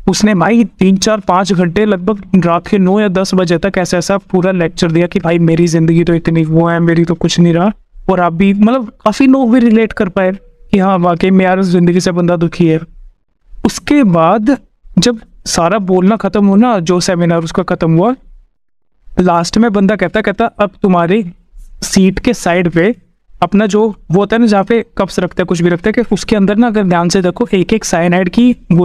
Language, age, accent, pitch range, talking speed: English, 20-39, Indian, 175-215 Hz, 135 wpm